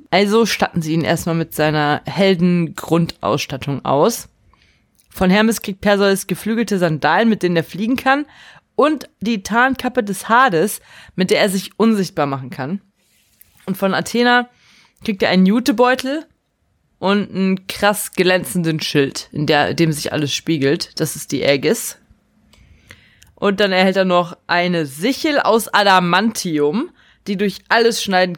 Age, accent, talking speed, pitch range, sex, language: 20-39, German, 140 wpm, 165-220 Hz, female, German